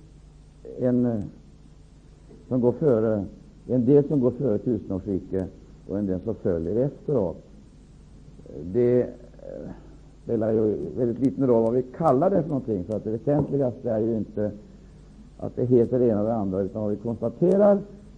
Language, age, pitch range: Swedish, 60-79, 110-160 Hz